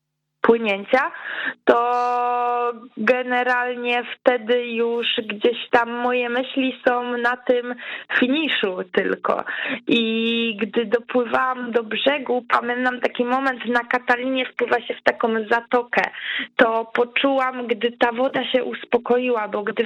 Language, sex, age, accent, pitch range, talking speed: Polish, female, 20-39, native, 230-255 Hz, 110 wpm